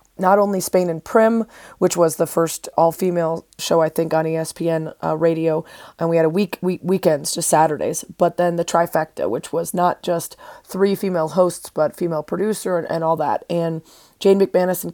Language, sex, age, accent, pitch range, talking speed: English, female, 30-49, American, 160-185 Hz, 195 wpm